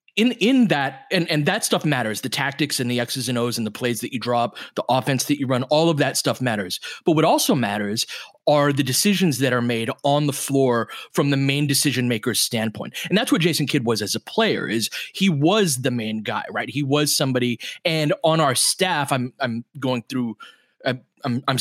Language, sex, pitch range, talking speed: English, male, 125-170 Hz, 220 wpm